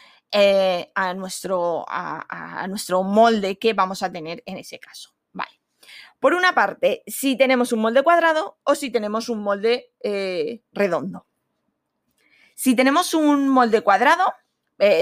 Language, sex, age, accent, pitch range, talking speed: Spanish, female, 20-39, Spanish, 195-255 Hz, 145 wpm